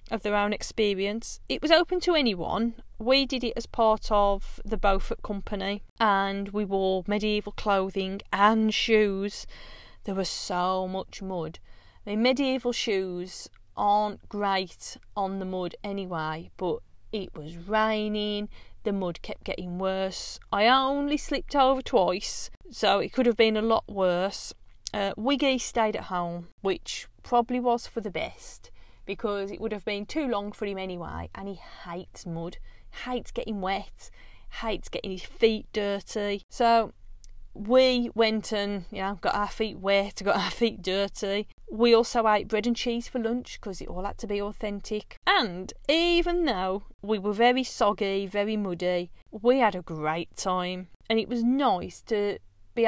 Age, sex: 40-59, female